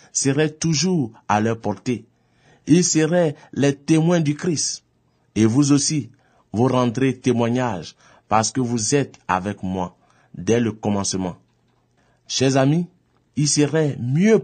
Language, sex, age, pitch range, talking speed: French, male, 50-69, 110-150 Hz, 130 wpm